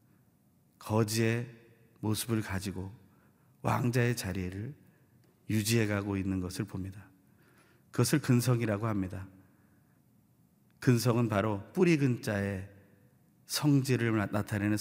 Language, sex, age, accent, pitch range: Korean, male, 40-59, native, 100-125 Hz